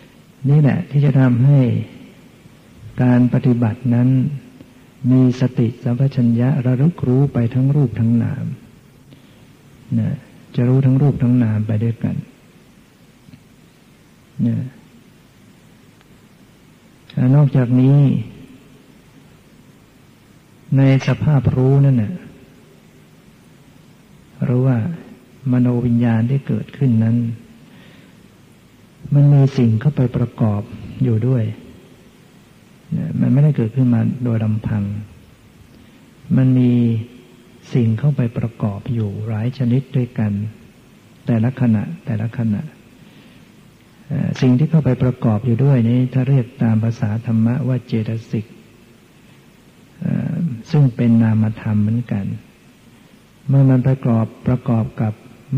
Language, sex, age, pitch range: Thai, male, 60-79, 115-135 Hz